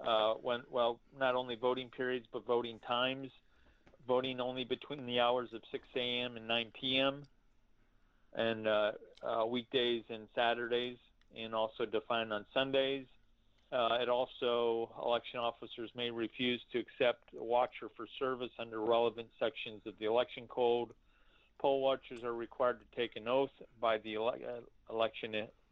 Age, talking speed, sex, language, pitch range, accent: 40-59, 145 wpm, male, English, 110-125 Hz, American